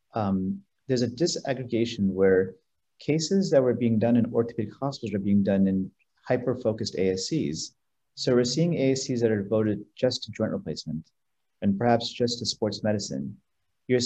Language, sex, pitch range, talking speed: English, male, 100-125 Hz, 160 wpm